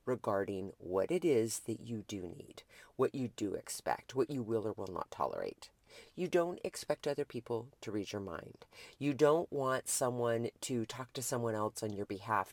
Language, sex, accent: English, female, American